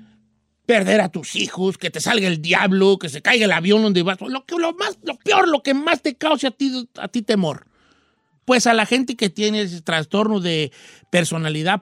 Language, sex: Spanish, male